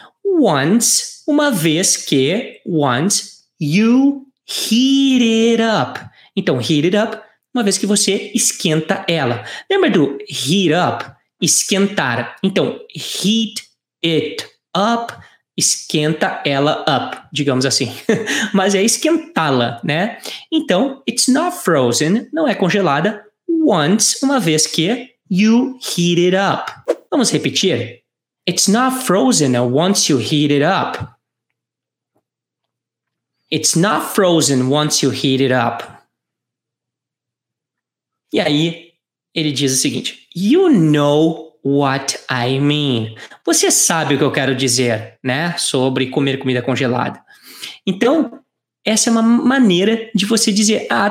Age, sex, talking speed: 20-39, male, 120 wpm